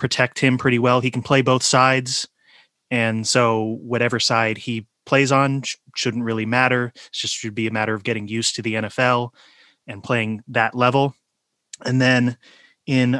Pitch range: 120-135 Hz